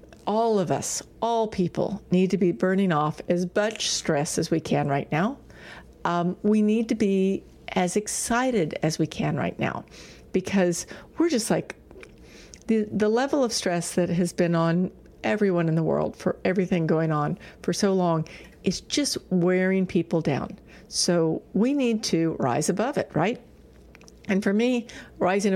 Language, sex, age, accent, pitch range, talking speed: English, female, 50-69, American, 175-225 Hz, 165 wpm